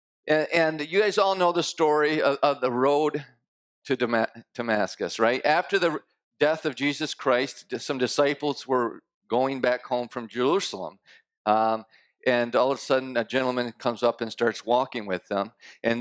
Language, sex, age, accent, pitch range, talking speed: English, male, 50-69, American, 120-150 Hz, 160 wpm